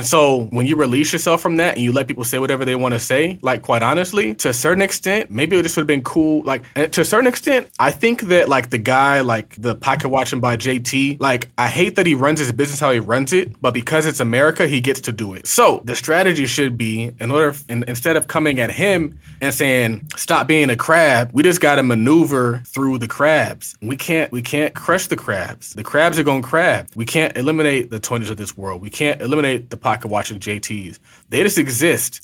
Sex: male